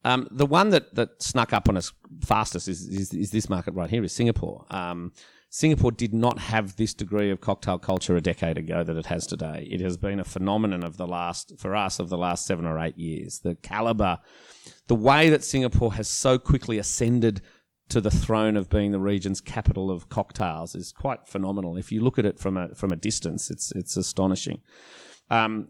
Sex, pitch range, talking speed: male, 95-115 Hz, 210 wpm